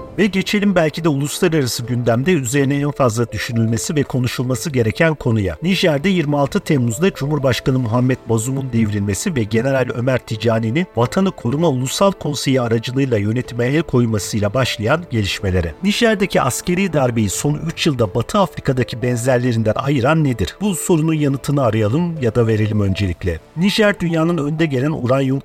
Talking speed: 135 wpm